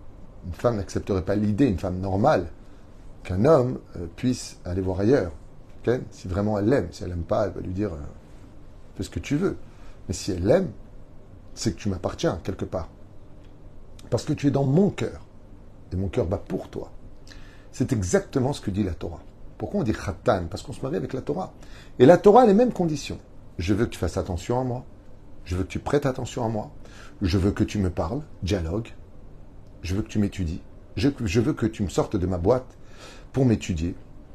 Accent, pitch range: French, 95-120 Hz